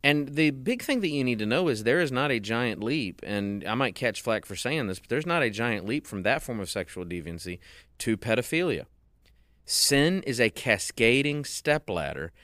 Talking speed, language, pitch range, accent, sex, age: 205 wpm, English, 90-120 Hz, American, male, 30-49